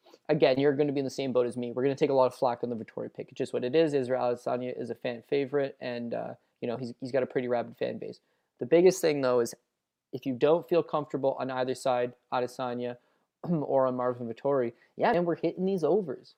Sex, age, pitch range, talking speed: male, 20-39, 125-155 Hz, 255 wpm